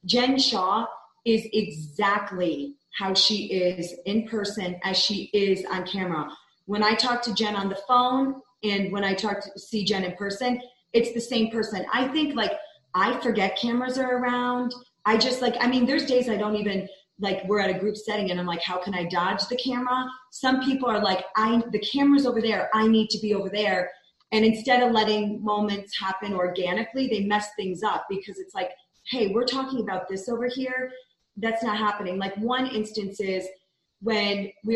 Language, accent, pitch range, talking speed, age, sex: English, American, 190-240 Hz, 195 wpm, 30-49, female